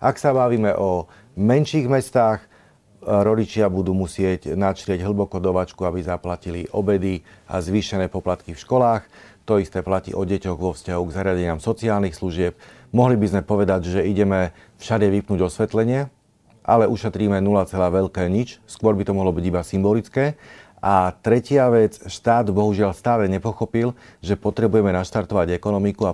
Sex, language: male, Slovak